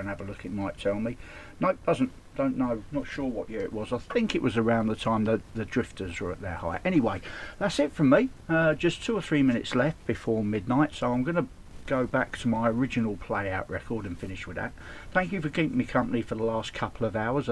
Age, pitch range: 50-69, 110-140 Hz